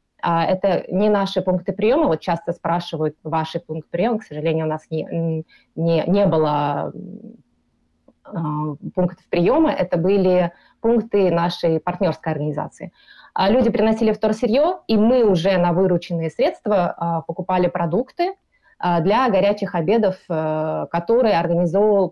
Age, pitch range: 20-39, 165-200 Hz